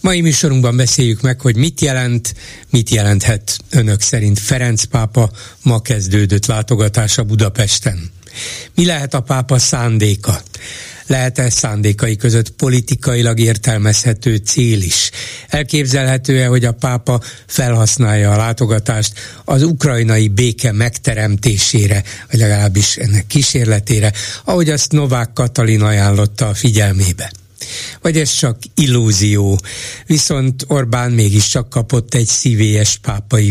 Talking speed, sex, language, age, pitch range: 110 wpm, male, Hungarian, 60-79, 105-130 Hz